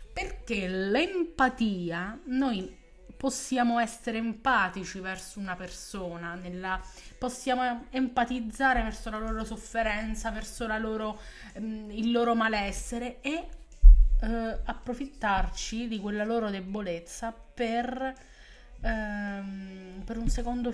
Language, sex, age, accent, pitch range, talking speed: Italian, female, 20-39, native, 200-250 Hz, 100 wpm